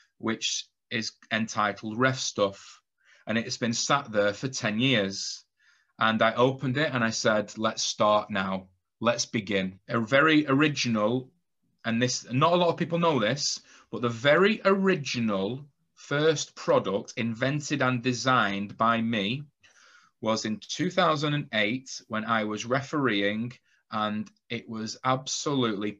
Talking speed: 140 wpm